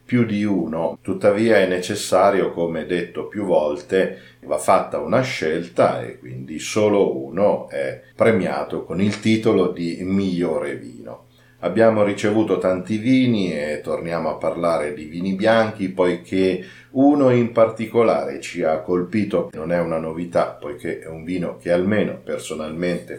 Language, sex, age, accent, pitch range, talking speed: Italian, male, 40-59, native, 85-115 Hz, 140 wpm